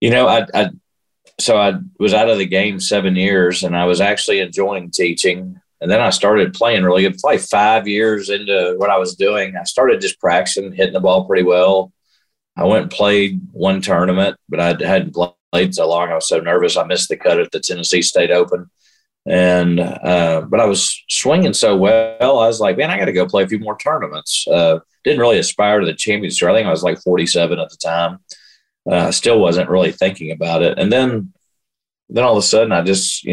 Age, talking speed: 40-59, 220 wpm